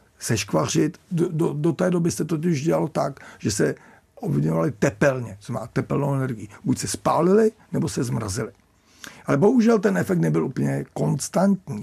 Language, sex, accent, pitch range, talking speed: Czech, male, native, 135-185 Hz, 155 wpm